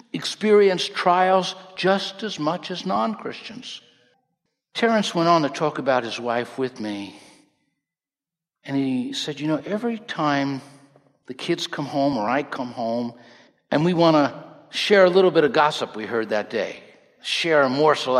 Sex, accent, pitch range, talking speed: male, American, 140-205 Hz, 160 wpm